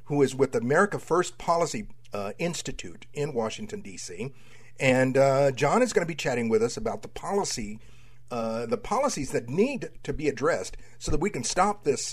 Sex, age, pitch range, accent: male, 50-69, 125-180 Hz, American